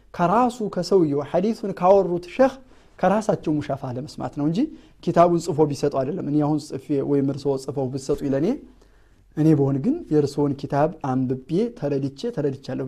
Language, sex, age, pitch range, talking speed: Amharic, male, 30-49, 130-180 Hz, 140 wpm